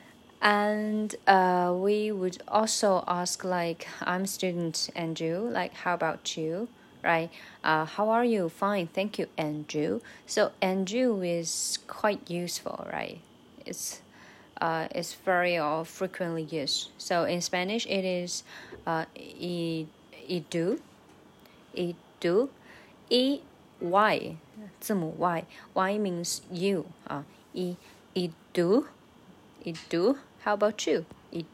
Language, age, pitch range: Chinese, 20-39, 170-210 Hz